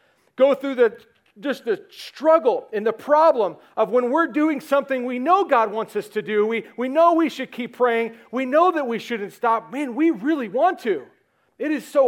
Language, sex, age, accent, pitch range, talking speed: English, male, 40-59, American, 225-315 Hz, 210 wpm